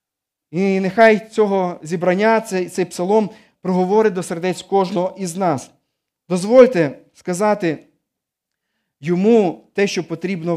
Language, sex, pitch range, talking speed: Ukrainian, male, 160-205 Hz, 100 wpm